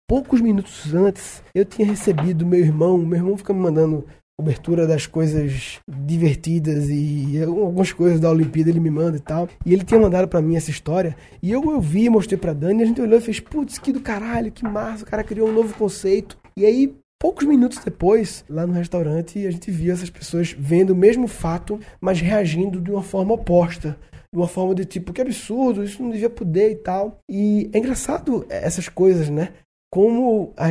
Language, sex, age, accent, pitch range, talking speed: Portuguese, male, 20-39, Brazilian, 170-230 Hz, 200 wpm